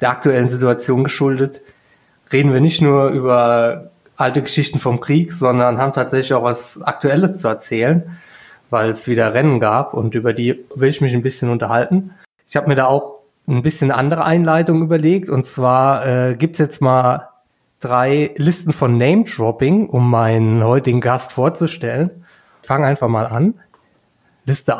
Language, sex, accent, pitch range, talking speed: German, male, German, 130-170 Hz, 160 wpm